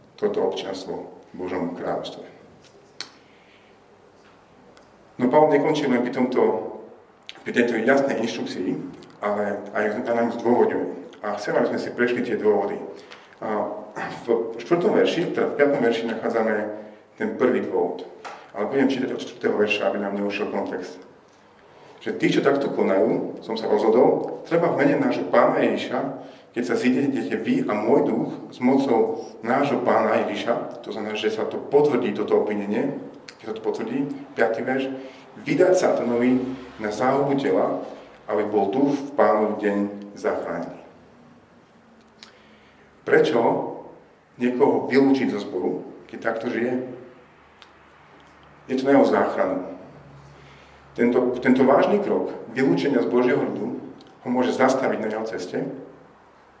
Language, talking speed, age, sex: Slovak, 135 wpm, 40-59, male